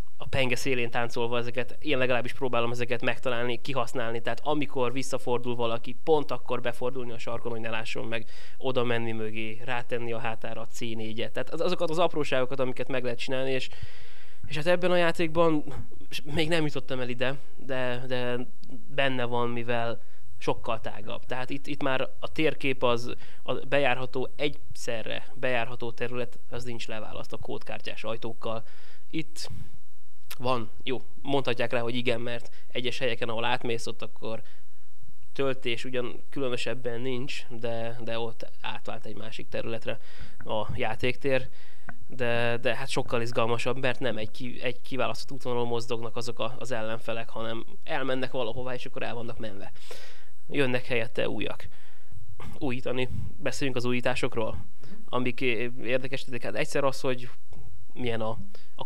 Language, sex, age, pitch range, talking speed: Hungarian, male, 20-39, 115-130 Hz, 145 wpm